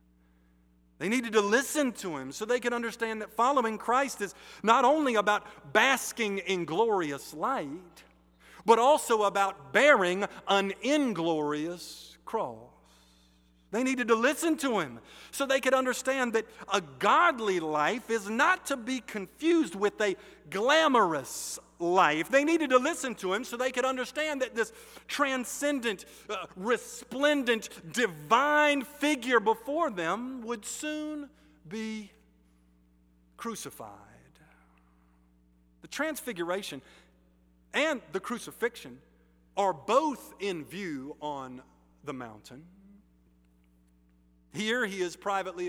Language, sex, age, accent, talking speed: English, male, 50-69, American, 115 wpm